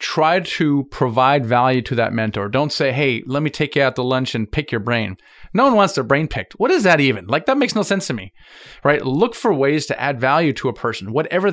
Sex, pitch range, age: male, 125-155 Hz, 30-49